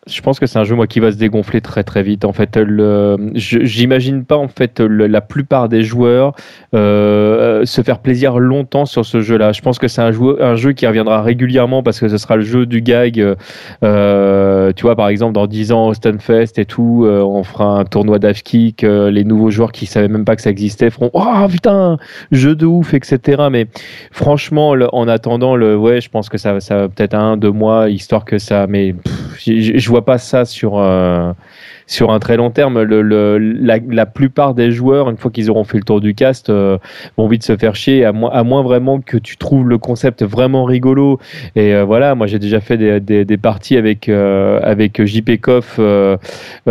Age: 20-39